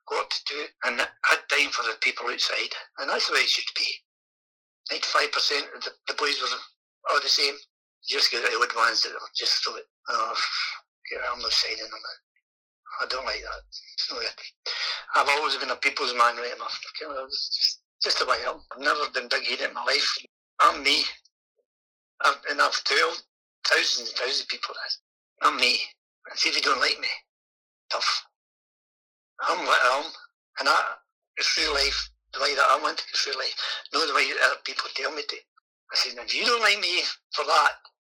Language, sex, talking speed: English, male, 200 wpm